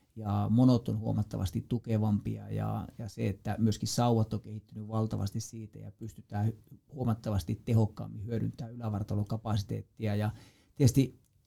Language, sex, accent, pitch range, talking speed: Finnish, male, native, 110-125 Hz, 120 wpm